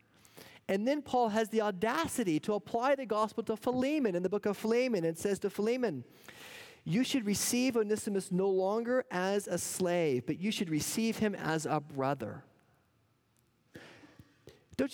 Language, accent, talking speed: English, American, 155 wpm